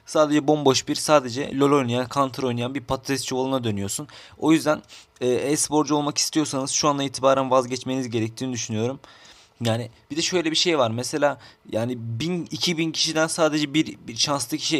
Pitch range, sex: 120-150 Hz, male